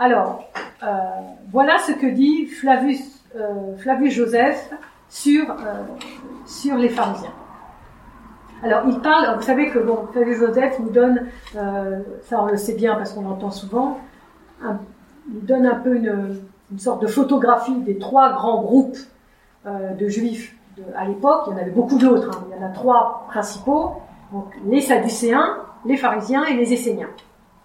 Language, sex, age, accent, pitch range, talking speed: French, female, 40-59, French, 210-275 Hz, 165 wpm